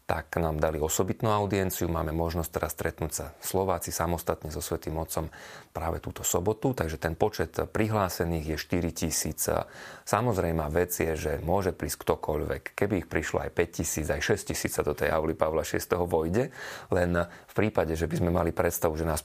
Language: Slovak